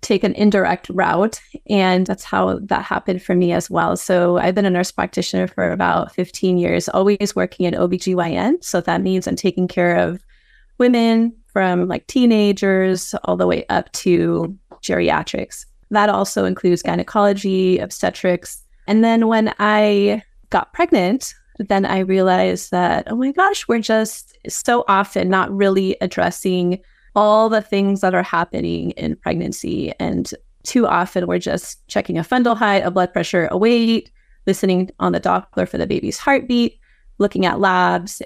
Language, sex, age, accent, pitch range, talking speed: English, female, 20-39, American, 180-225 Hz, 160 wpm